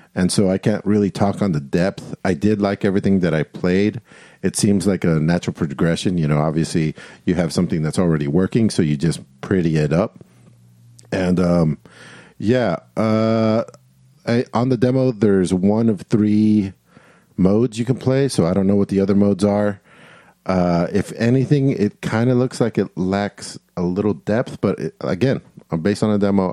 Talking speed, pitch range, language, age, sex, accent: 185 wpm, 85-105 Hz, English, 50-69, male, American